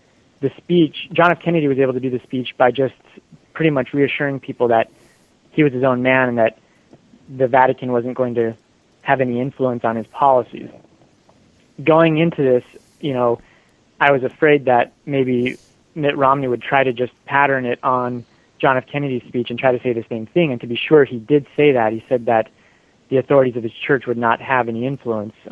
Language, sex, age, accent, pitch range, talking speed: English, male, 20-39, American, 120-145 Hz, 205 wpm